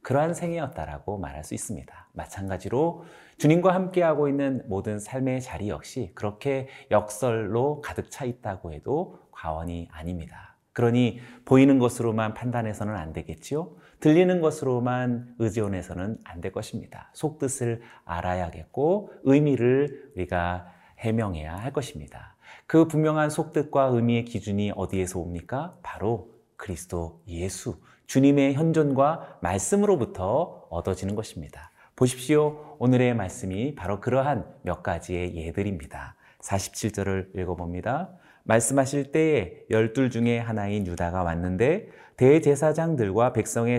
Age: 40-59